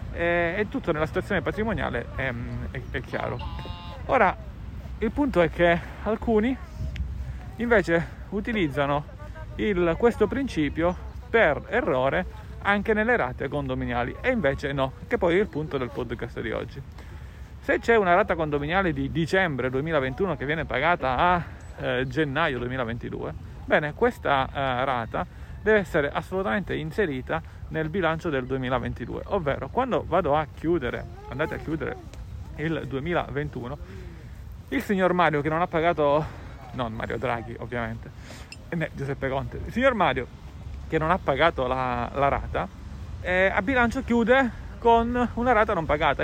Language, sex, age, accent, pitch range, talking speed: Italian, male, 40-59, native, 130-195 Hz, 140 wpm